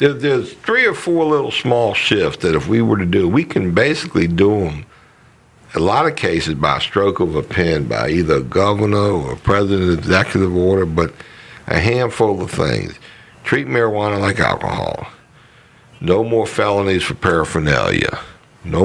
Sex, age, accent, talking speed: male, 60-79, American, 160 wpm